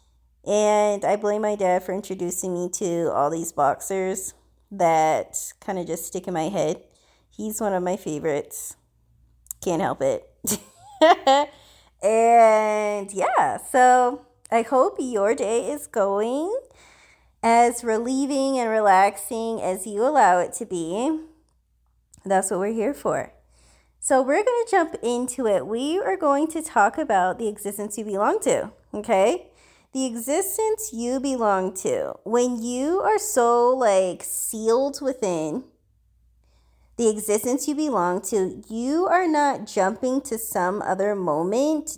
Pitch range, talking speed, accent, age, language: 190-260 Hz, 135 wpm, American, 20-39, English